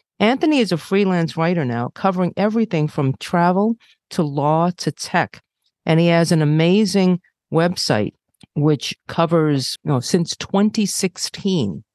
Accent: American